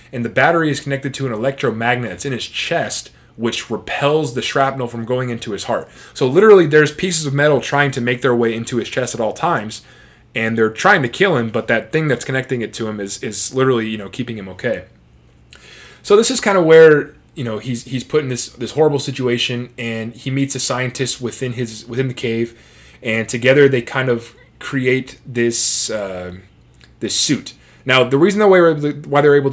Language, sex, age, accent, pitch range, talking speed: English, male, 20-39, American, 115-135 Hz, 215 wpm